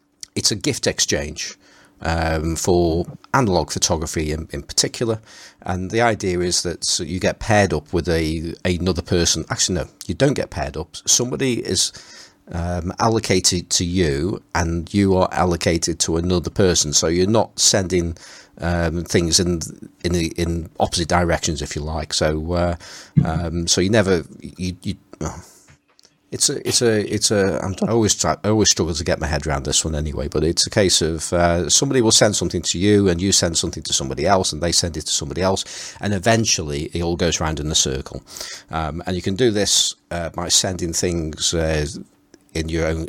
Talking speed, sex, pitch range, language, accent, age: 190 wpm, male, 80-95 Hz, English, British, 40-59